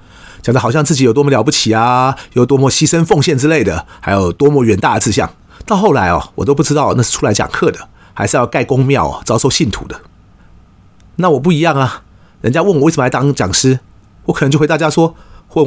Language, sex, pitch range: Chinese, male, 100-155 Hz